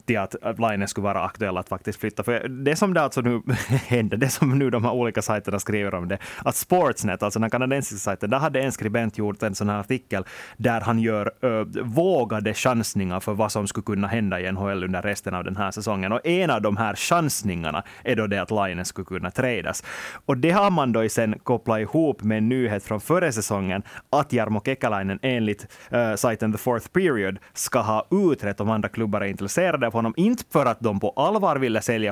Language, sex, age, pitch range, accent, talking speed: Swedish, male, 30-49, 105-135 Hz, Finnish, 220 wpm